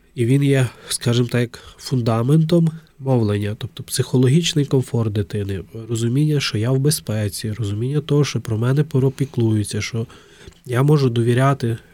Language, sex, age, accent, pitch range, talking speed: Ukrainian, male, 20-39, native, 115-140 Hz, 130 wpm